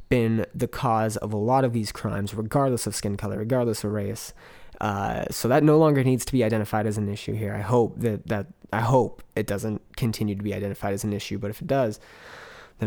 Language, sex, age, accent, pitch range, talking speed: English, male, 20-39, American, 105-125 Hz, 230 wpm